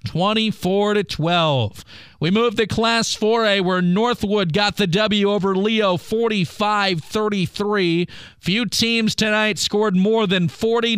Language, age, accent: English, 40-59, American